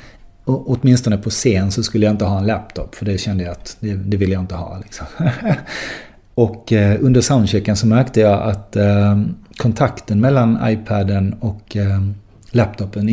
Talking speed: 175 wpm